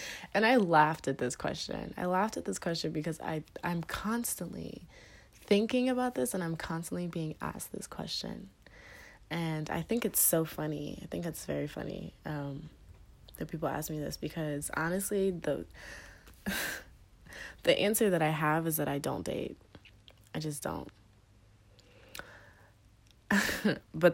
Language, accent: English, American